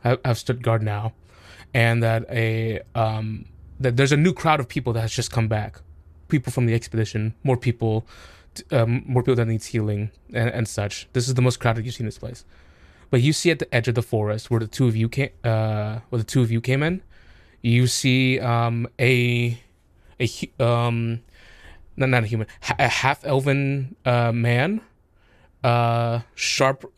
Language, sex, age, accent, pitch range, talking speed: English, male, 20-39, American, 110-130 Hz, 185 wpm